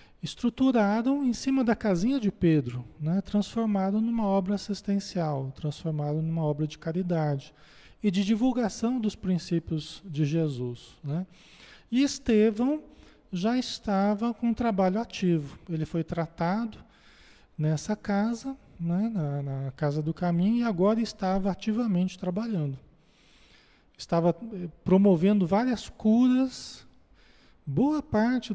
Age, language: 40-59, Portuguese